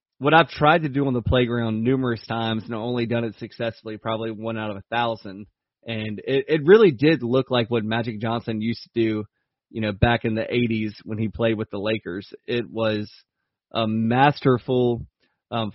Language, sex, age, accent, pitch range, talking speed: English, male, 20-39, American, 110-125 Hz, 195 wpm